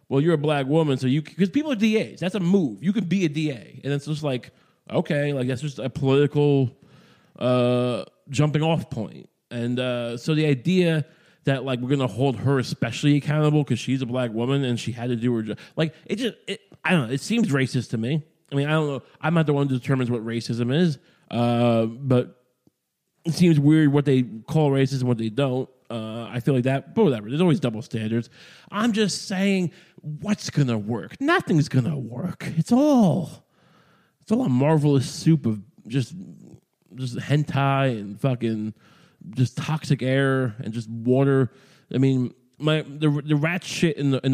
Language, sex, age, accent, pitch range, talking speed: English, male, 20-39, American, 125-170 Hz, 195 wpm